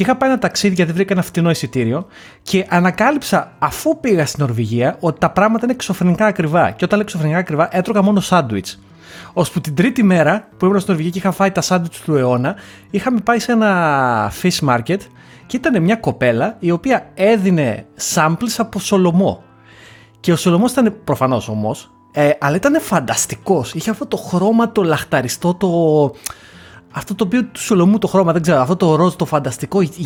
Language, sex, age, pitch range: Greek, male, 30-49, 145-205 Hz